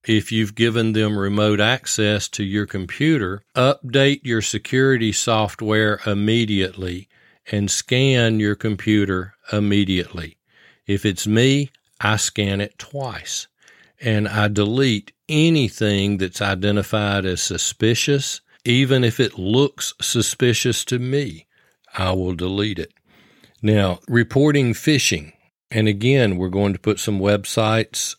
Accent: American